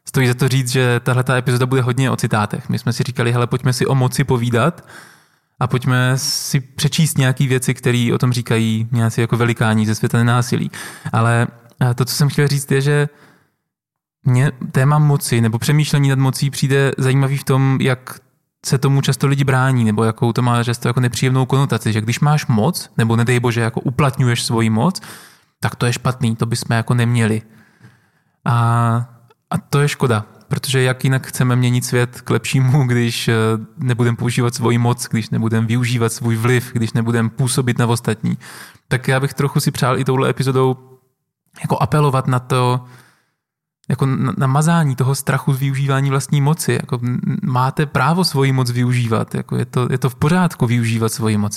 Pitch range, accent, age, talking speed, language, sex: 120-140 Hz, native, 20-39, 180 wpm, Czech, male